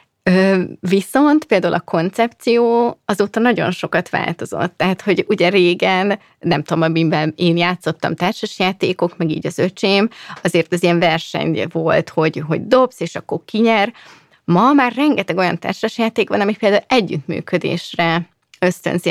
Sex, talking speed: female, 135 wpm